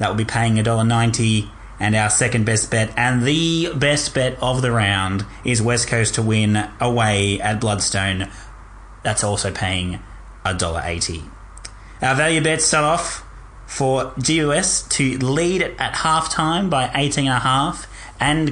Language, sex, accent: English, male, Australian